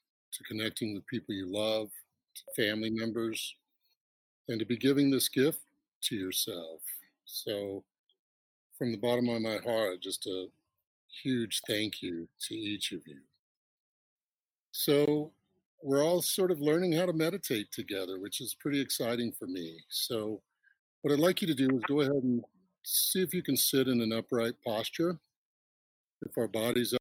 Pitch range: 105-140 Hz